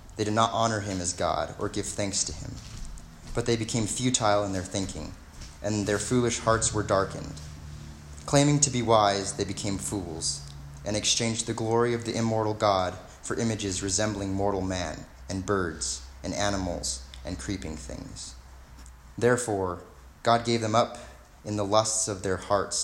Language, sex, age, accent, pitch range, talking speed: English, male, 30-49, American, 90-115 Hz, 165 wpm